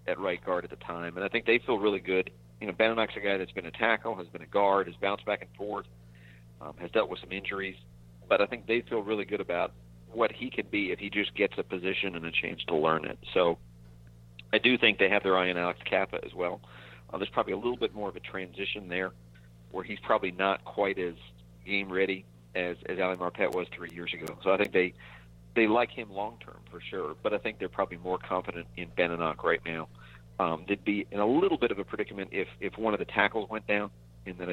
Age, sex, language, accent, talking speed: 50-69, male, English, American, 245 wpm